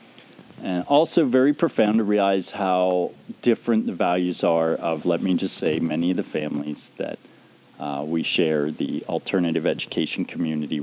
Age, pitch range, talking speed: 40-59, 85-115 Hz, 155 wpm